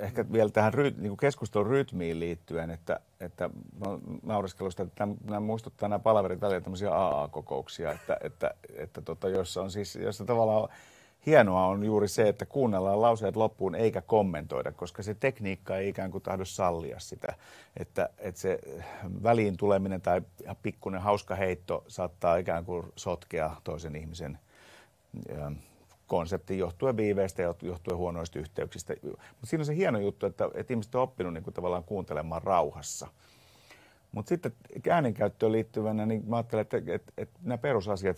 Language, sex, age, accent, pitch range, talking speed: Finnish, male, 50-69, native, 90-110 Hz, 155 wpm